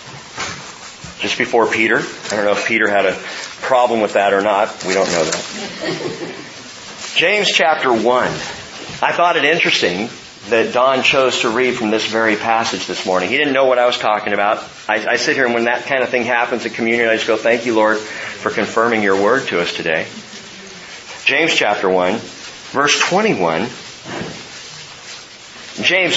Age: 40-59